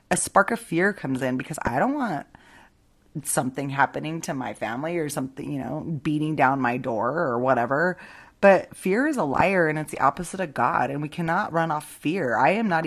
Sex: female